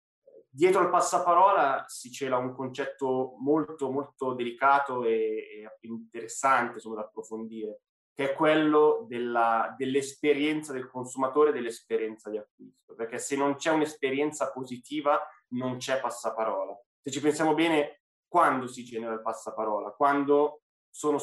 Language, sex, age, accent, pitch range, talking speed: Italian, male, 20-39, native, 120-145 Hz, 130 wpm